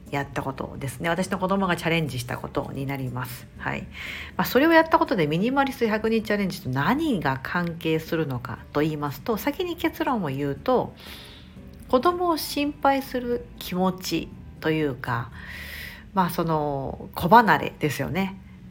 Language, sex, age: Japanese, female, 50-69